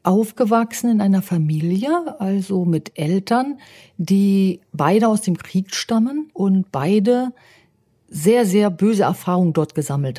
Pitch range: 180-215 Hz